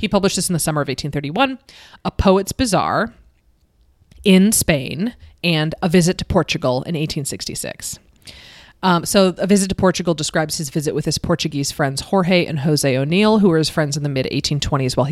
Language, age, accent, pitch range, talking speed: English, 30-49, American, 155-195 Hz, 180 wpm